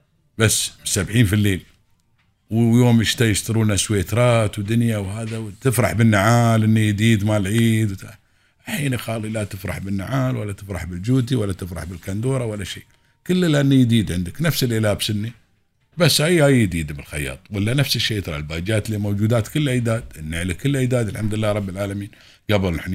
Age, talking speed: 50-69, 150 wpm